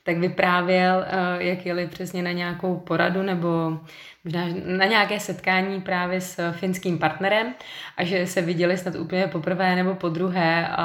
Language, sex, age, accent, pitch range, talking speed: Czech, female, 20-39, native, 170-185 Hz, 150 wpm